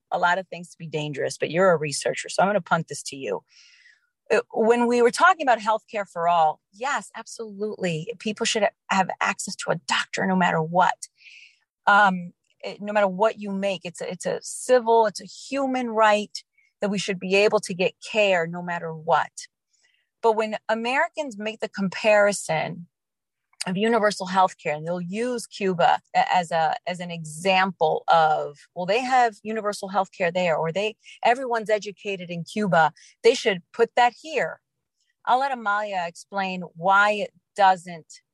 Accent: American